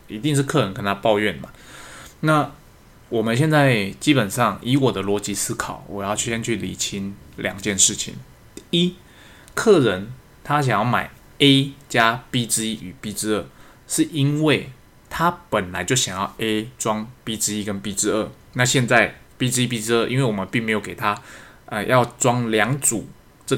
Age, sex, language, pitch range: 20-39, male, Chinese, 105-135 Hz